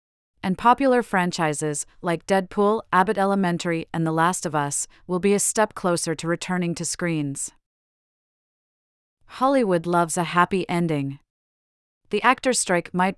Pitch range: 175-205 Hz